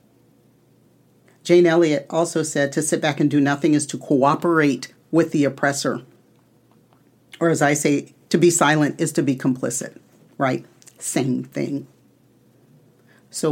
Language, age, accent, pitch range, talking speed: English, 40-59, American, 145-175 Hz, 140 wpm